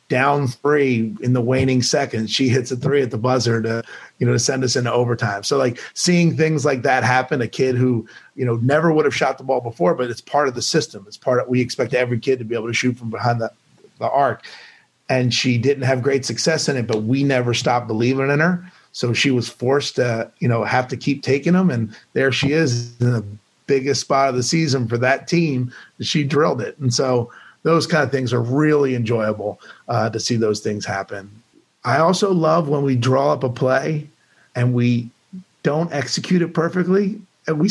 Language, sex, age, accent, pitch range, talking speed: English, male, 30-49, American, 120-150 Hz, 225 wpm